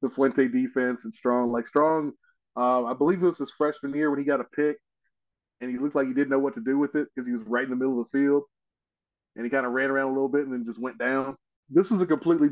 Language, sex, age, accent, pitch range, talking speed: English, male, 20-39, American, 120-140 Hz, 290 wpm